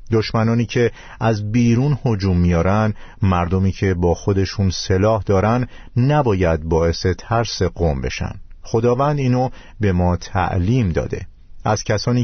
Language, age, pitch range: Persian, 50-69, 90-120 Hz